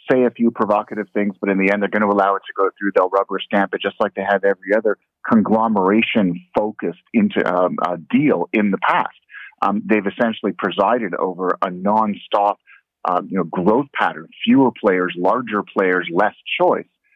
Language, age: English, 30-49